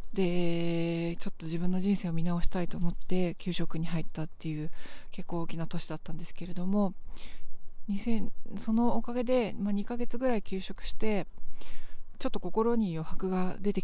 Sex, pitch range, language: female, 170-215 Hz, Japanese